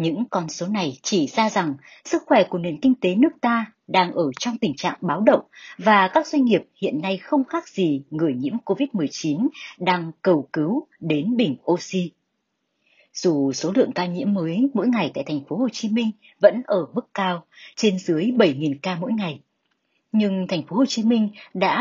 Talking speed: 195 wpm